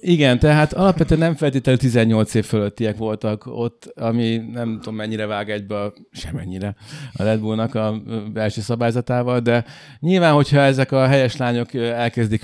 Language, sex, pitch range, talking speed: Hungarian, male, 105-125 Hz, 150 wpm